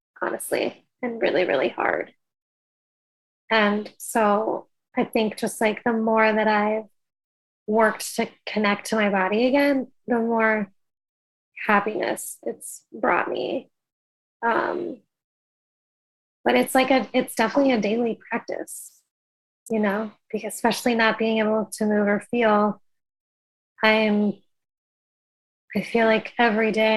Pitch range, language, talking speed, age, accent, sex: 205-225 Hz, English, 120 wpm, 20-39, American, female